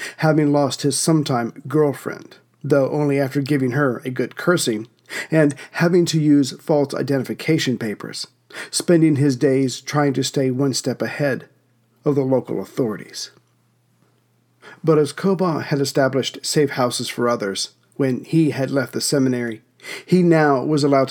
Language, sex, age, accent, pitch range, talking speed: English, male, 50-69, American, 130-155 Hz, 150 wpm